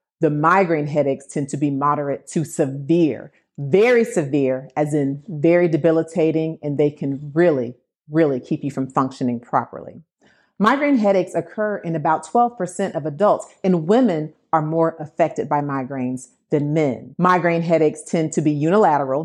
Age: 40-59